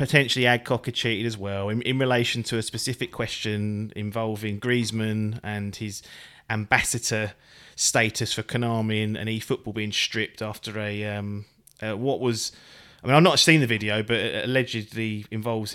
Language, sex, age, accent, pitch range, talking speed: English, male, 30-49, British, 105-125 Hz, 170 wpm